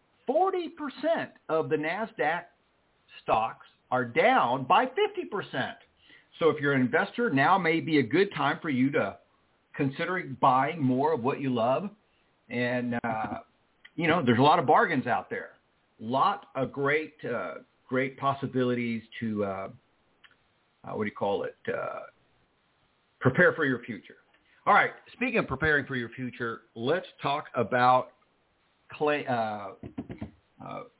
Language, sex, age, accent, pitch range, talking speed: English, male, 50-69, American, 120-150 Hz, 145 wpm